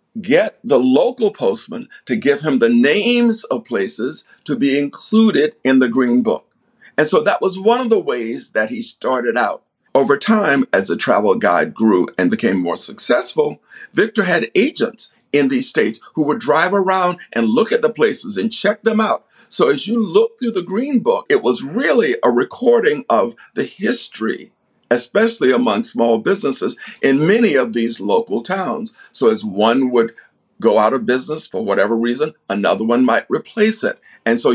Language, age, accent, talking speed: English, 50-69, American, 180 wpm